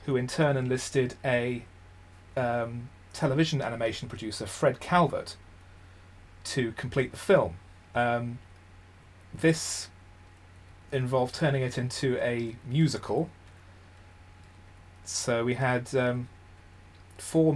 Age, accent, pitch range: 30-49, British, 95-130 Hz